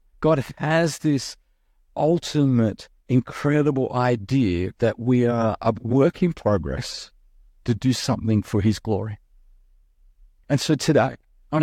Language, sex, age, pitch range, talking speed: English, male, 40-59, 85-135 Hz, 120 wpm